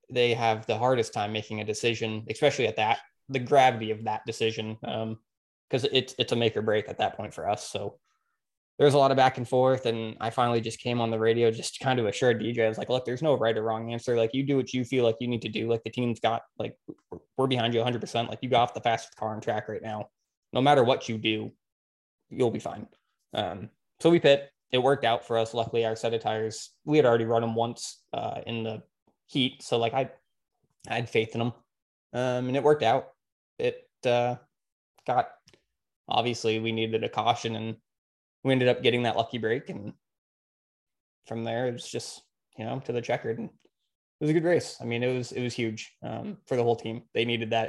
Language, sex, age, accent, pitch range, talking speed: English, male, 20-39, American, 110-125 Hz, 235 wpm